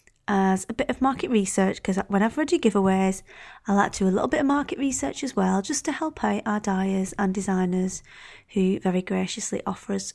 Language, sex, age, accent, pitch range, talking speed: English, female, 30-49, British, 195-250 Hz, 215 wpm